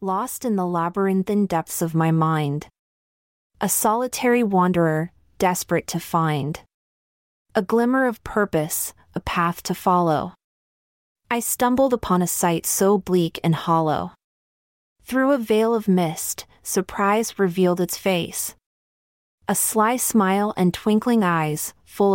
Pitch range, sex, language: 165-220 Hz, female, English